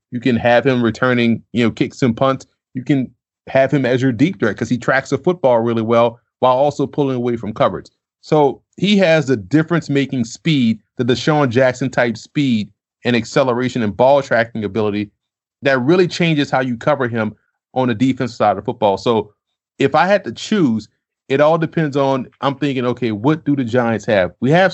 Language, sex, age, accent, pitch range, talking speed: English, male, 30-49, American, 115-140 Hz, 200 wpm